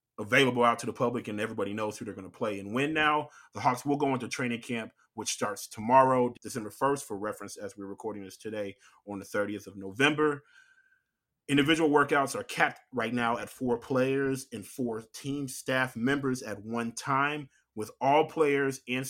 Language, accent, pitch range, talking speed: English, American, 110-135 Hz, 190 wpm